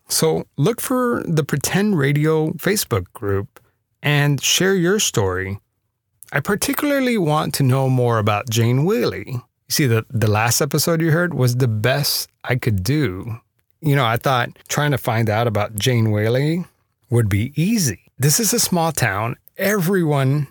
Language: English